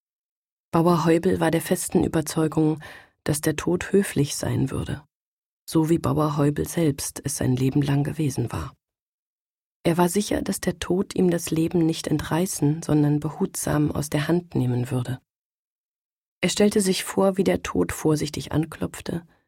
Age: 30-49